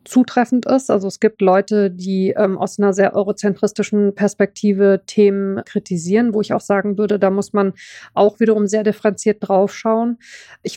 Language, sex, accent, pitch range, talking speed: German, female, German, 195-215 Hz, 165 wpm